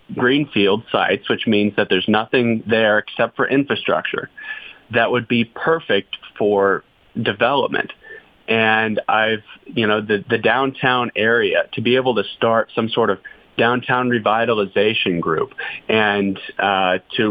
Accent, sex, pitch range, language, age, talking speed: American, male, 105-125 Hz, English, 30-49, 135 wpm